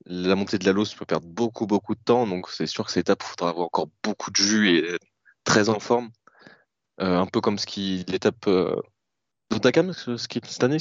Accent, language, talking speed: French, French, 240 wpm